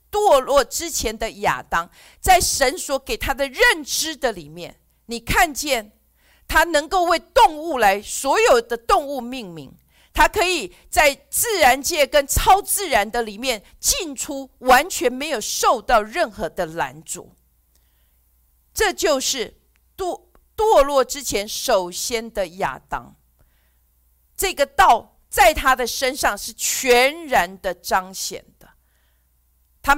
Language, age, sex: Chinese, 50-69, female